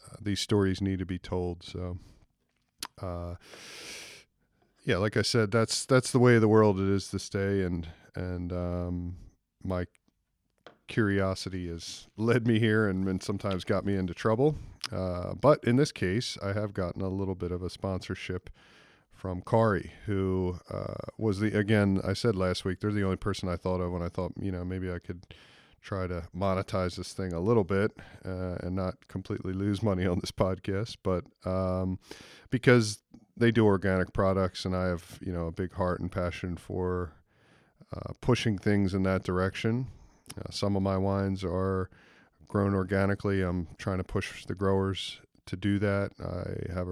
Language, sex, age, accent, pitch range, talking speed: English, male, 40-59, American, 90-105 Hz, 180 wpm